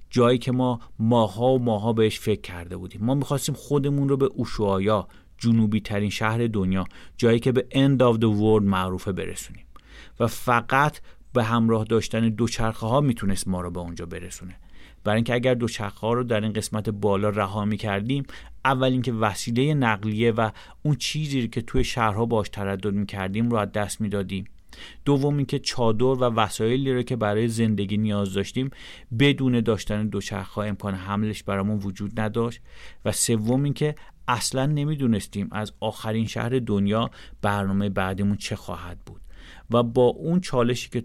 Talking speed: 160 wpm